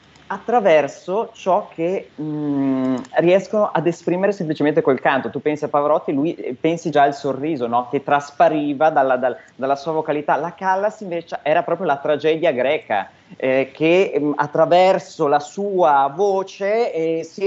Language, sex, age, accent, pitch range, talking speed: Italian, male, 30-49, native, 140-190 Hz, 155 wpm